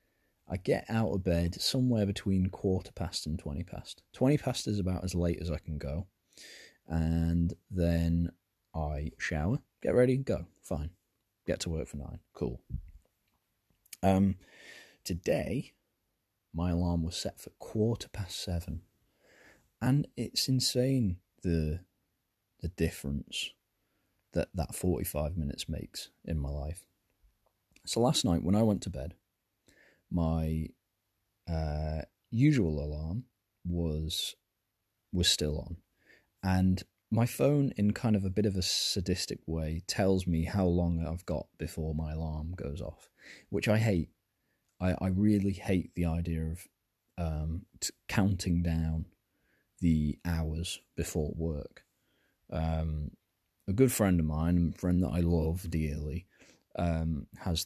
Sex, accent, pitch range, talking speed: male, British, 80-100 Hz, 135 wpm